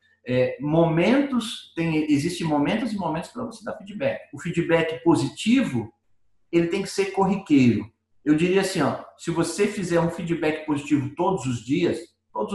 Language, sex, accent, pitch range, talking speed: Portuguese, male, Brazilian, 130-200 Hz, 160 wpm